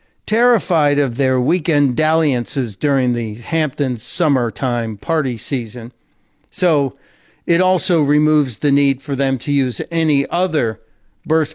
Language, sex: English, male